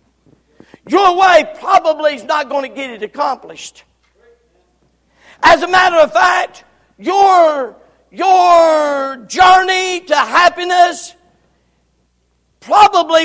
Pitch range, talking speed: 270-320 Hz, 95 wpm